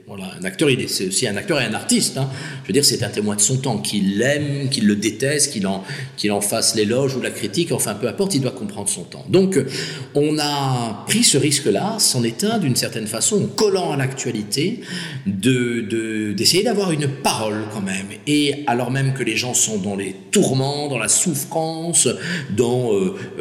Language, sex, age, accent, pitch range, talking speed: French, male, 50-69, French, 115-165 Hz, 210 wpm